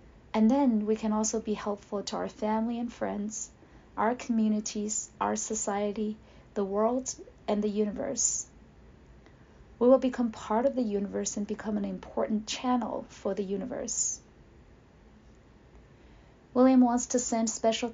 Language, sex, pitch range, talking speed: English, female, 210-235 Hz, 135 wpm